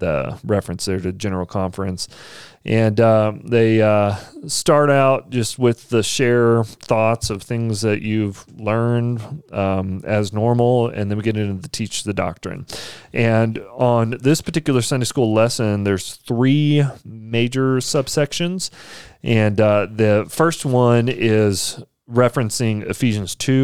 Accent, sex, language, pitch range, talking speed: American, male, English, 100-125 Hz, 135 wpm